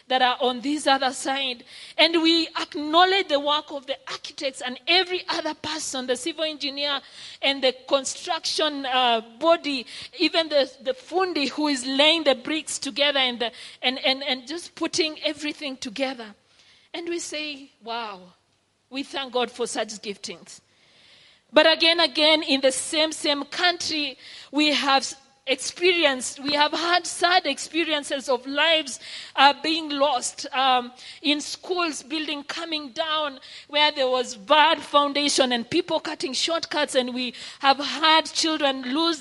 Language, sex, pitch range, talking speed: English, female, 265-320 Hz, 145 wpm